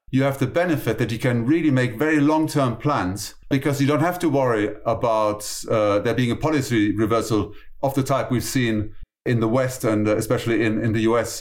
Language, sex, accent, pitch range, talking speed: English, male, German, 110-135 Hz, 210 wpm